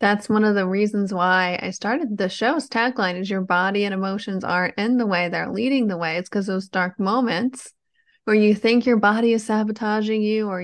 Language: English